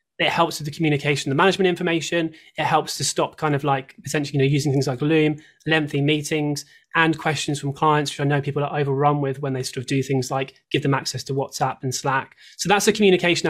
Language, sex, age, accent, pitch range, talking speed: English, male, 20-39, British, 135-160 Hz, 235 wpm